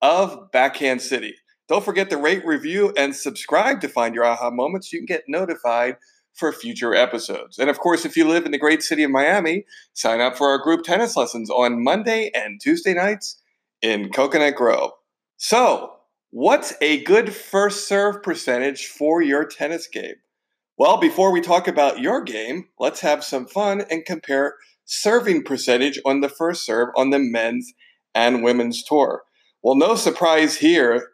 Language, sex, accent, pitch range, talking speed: English, male, American, 135-200 Hz, 175 wpm